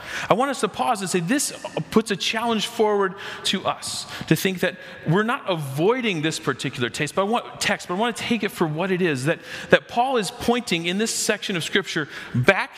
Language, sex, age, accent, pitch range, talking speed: English, male, 40-59, American, 165-215 Hz, 225 wpm